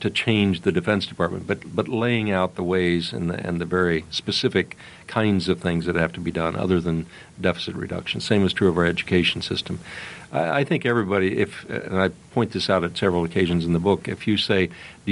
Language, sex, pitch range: English, male, 85-100 Hz